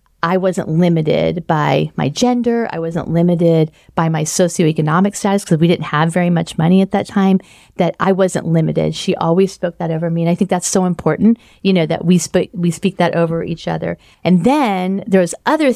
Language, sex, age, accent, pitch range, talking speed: English, female, 40-59, American, 160-190 Hz, 205 wpm